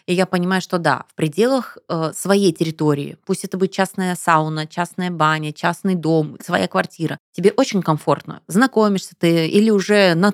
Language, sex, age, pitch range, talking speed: Russian, female, 20-39, 165-205 Hz, 165 wpm